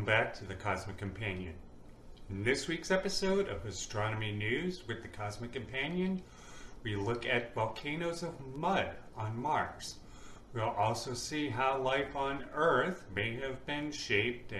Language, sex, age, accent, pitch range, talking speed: English, male, 40-59, American, 105-160 Hz, 150 wpm